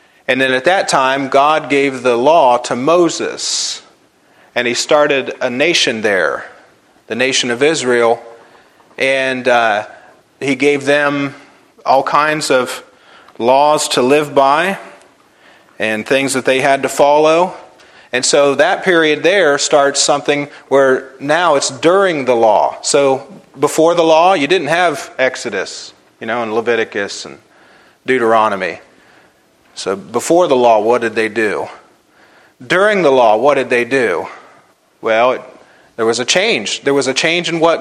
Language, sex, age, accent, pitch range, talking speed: English, male, 40-59, American, 130-155 Hz, 150 wpm